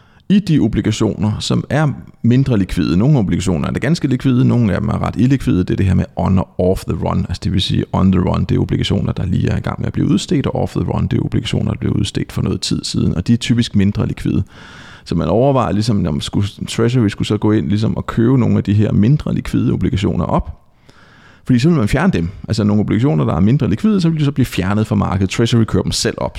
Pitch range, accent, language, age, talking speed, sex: 100-135 Hz, native, Danish, 30-49, 260 wpm, male